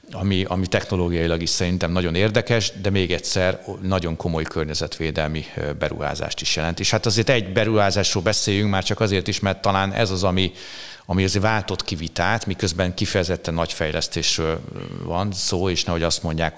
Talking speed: 160 wpm